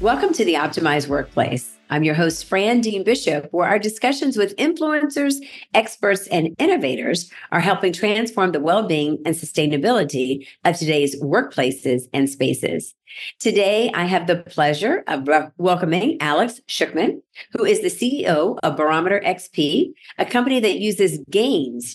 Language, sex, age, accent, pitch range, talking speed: English, female, 50-69, American, 155-215 Hz, 140 wpm